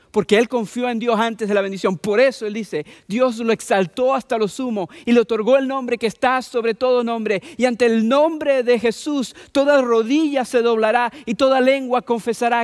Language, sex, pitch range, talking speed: English, male, 205-245 Hz, 205 wpm